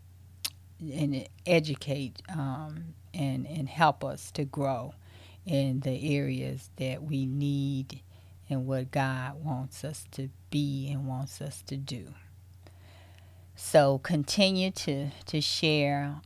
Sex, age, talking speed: female, 40-59, 120 wpm